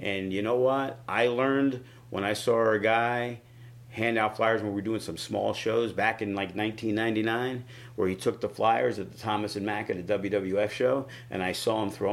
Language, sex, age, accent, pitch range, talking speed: English, male, 50-69, American, 100-120 Hz, 220 wpm